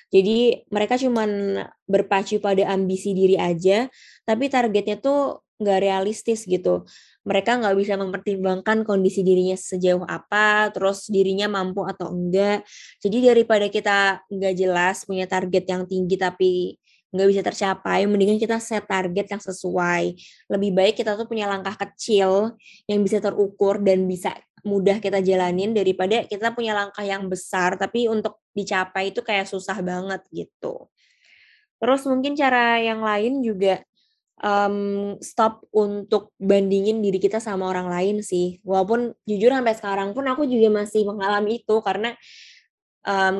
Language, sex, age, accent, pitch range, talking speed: Indonesian, female, 20-39, native, 190-215 Hz, 140 wpm